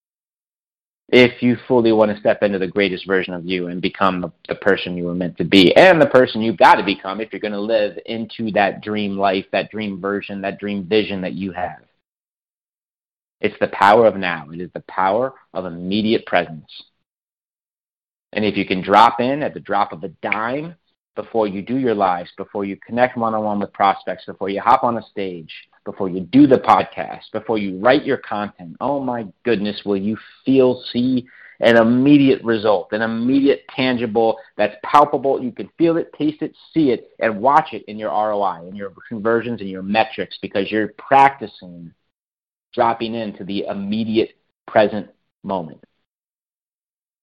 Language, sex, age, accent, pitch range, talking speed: English, male, 30-49, American, 95-120 Hz, 180 wpm